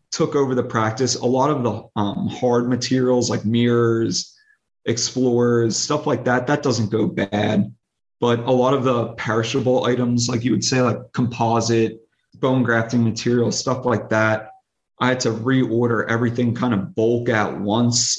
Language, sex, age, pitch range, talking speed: English, male, 30-49, 115-130 Hz, 165 wpm